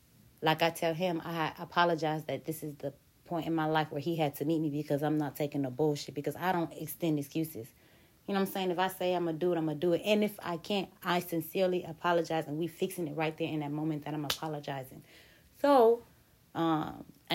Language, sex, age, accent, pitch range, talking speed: English, female, 30-49, American, 145-170 Hz, 240 wpm